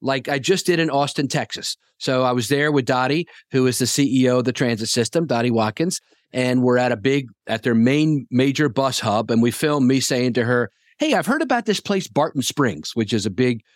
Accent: American